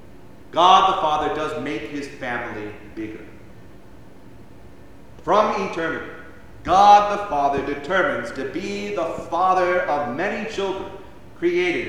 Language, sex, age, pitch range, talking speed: English, male, 40-59, 120-180 Hz, 110 wpm